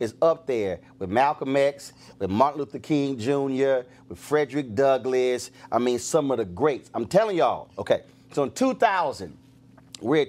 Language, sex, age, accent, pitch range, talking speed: English, male, 30-49, American, 125-175 Hz, 165 wpm